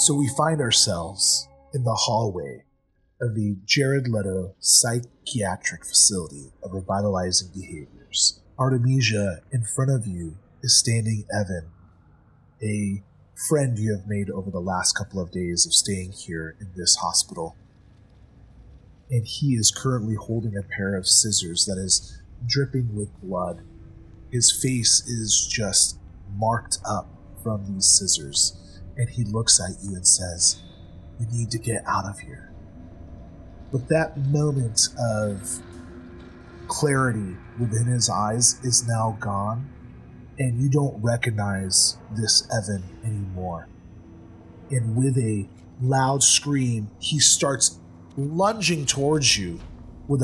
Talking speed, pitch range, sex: 130 wpm, 90-120 Hz, male